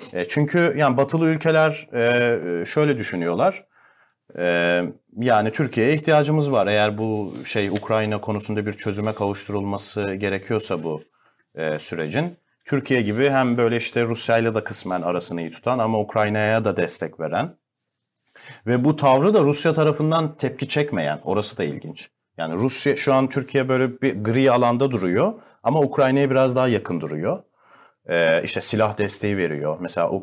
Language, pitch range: Turkish, 105-135 Hz